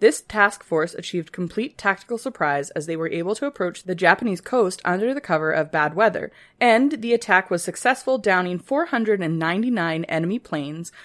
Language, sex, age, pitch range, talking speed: English, female, 20-39, 165-235 Hz, 170 wpm